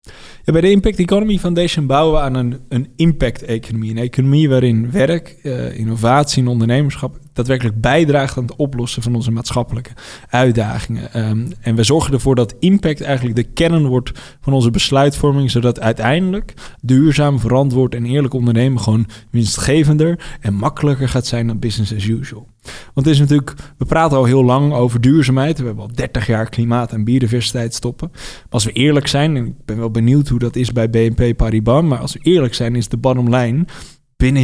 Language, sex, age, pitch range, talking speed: Dutch, male, 20-39, 115-145 Hz, 180 wpm